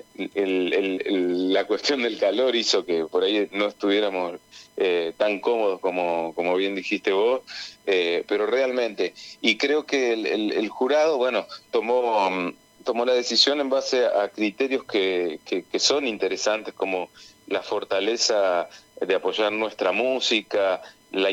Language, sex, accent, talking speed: Spanish, male, Argentinian, 150 wpm